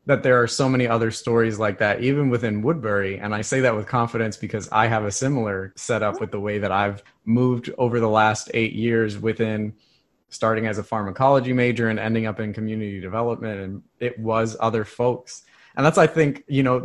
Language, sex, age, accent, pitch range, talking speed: English, male, 20-39, American, 110-125 Hz, 205 wpm